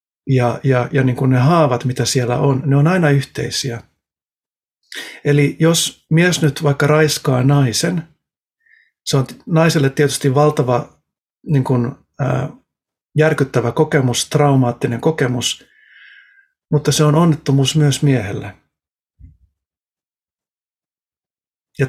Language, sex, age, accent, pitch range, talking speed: Finnish, male, 50-69, native, 130-160 Hz, 105 wpm